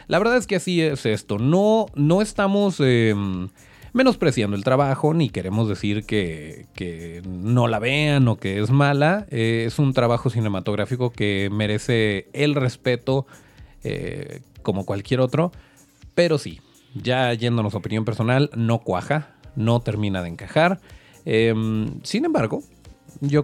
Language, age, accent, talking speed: Spanish, 30-49, Mexican, 145 wpm